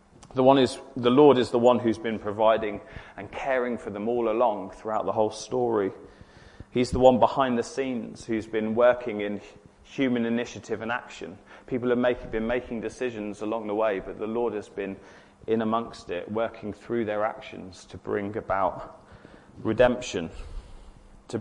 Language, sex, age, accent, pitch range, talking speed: English, male, 30-49, British, 110-140 Hz, 170 wpm